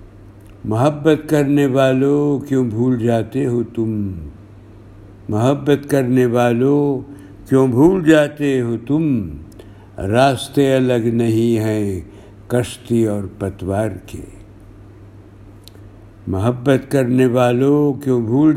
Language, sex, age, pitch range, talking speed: Urdu, male, 60-79, 105-140 Hz, 95 wpm